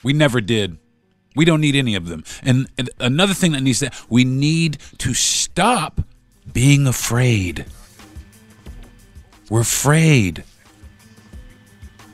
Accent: American